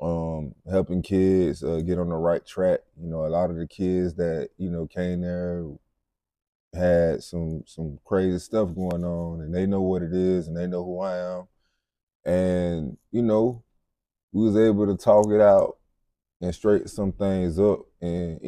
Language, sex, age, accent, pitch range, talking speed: English, male, 20-39, American, 85-95 Hz, 180 wpm